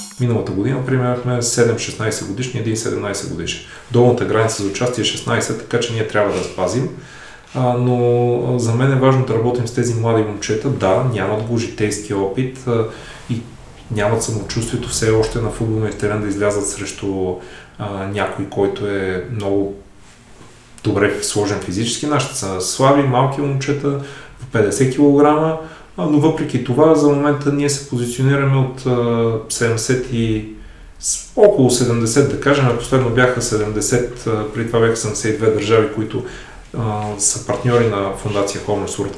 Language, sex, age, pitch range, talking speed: Bulgarian, male, 30-49, 105-130 Hz, 140 wpm